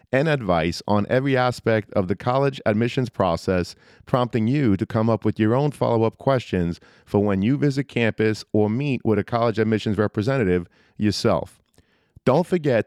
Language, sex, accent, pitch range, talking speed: English, male, American, 105-135 Hz, 165 wpm